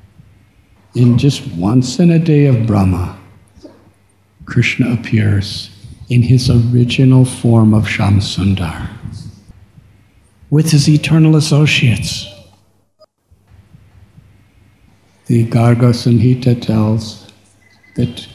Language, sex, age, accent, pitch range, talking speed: English, male, 60-79, American, 105-135 Hz, 80 wpm